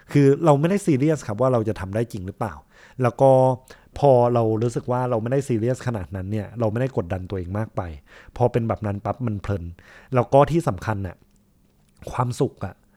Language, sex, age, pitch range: Thai, male, 20-39, 105-130 Hz